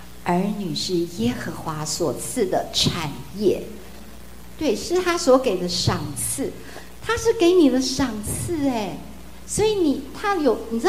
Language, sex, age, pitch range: Chinese, female, 50-69, 165-245 Hz